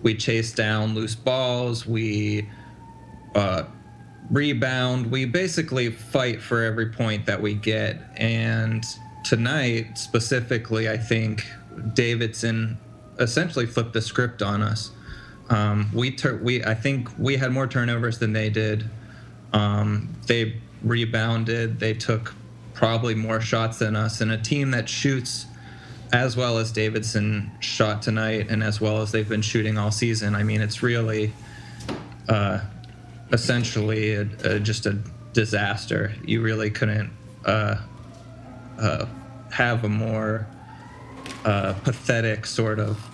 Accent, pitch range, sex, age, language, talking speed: American, 110-120 Hz, male, 20-39, English, 130 wpm